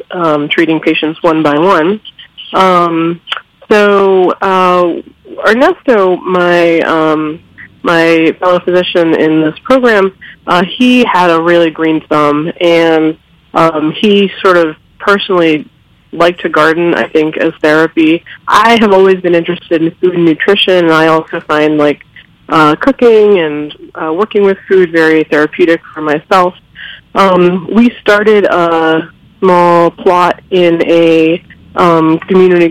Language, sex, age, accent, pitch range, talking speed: English, female, 20-39, American, 160-190 Hz, 135 wpm